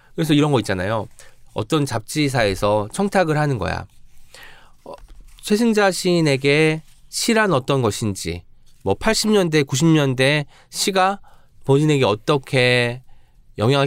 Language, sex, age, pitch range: Korean, male, 20-39, 120-175 Hz